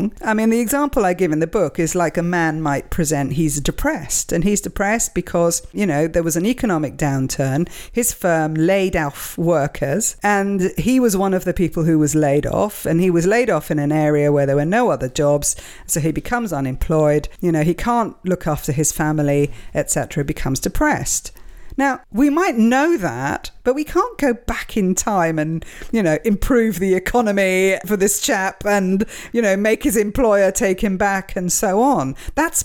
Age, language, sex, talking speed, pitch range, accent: 50-69, English, female, 195 wpm, 155-215 Hz, British